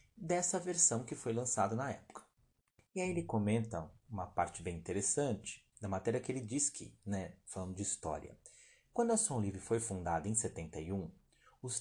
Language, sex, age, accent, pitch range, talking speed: Portuguese, male, 30-49, Brazilian, 95-120 Hz, 175 wpm